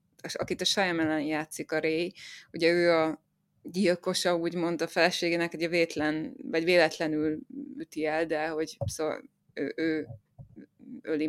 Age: 20-39